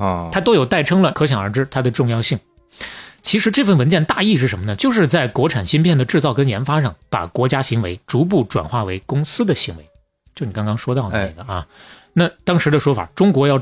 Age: 20-39